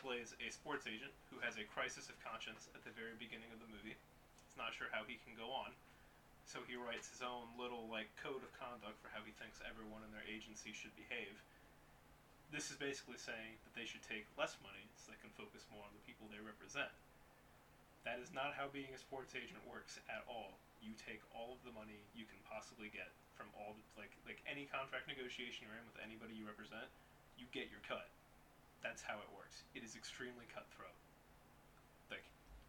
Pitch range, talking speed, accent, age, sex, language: 110-135 Hz, 205 wpm, American, 20-39, male, English